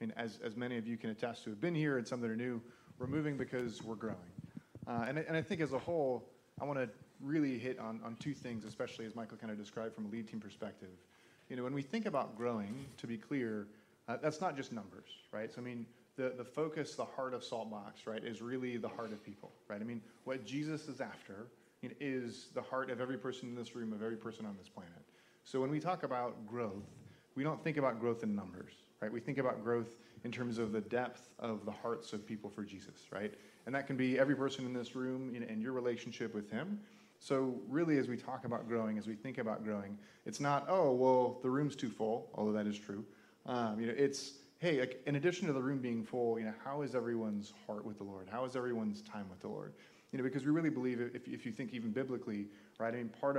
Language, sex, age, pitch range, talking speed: English, male, 30-49, 110-130 Hz, 245 wpm